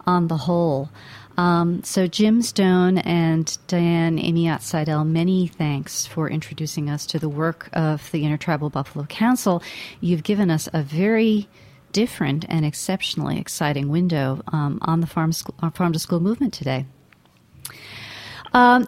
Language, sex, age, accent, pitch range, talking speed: English, female, 40-59, American, 155-190 Hz, 140 wpm